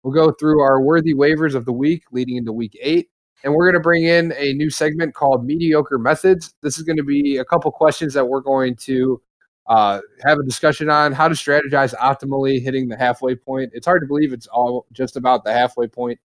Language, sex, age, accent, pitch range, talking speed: English, male, 20-39, American, 120-155 Hz, 225 wpm